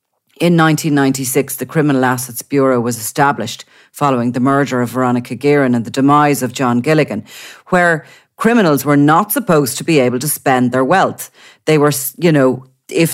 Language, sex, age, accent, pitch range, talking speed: English, female, 40-59, Irish, 125-150 Hz, 170 wpm